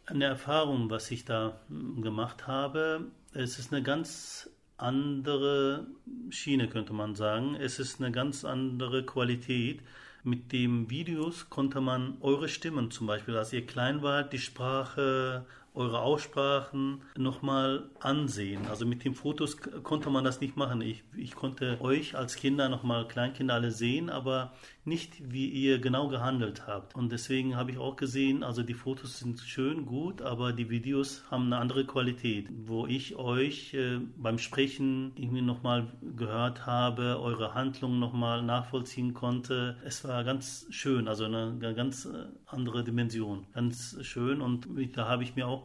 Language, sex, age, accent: German, male, 40-59, German